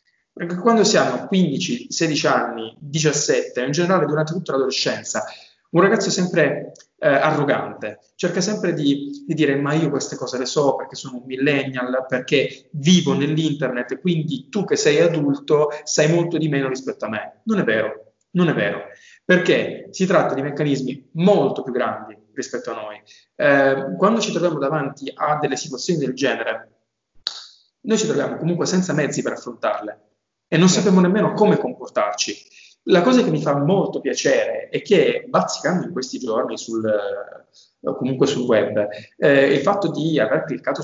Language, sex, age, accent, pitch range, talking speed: Italian, male, 20-39, native, 130-195 Hz, 165 wpm